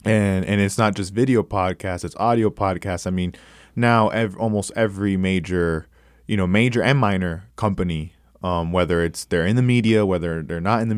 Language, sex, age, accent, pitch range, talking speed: English, male, 20-39, American, 80-105 Hz, 190 wpm